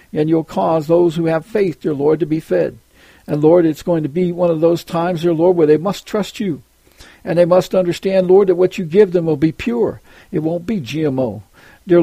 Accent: American